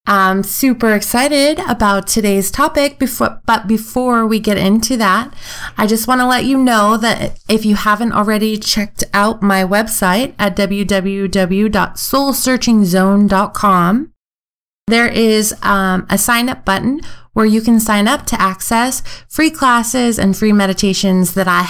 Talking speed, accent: 145 wpm, American